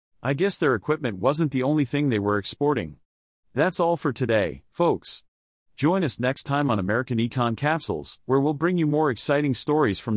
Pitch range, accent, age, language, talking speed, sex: 110-155 Hz, American, 40-59, English, 190 wpm, male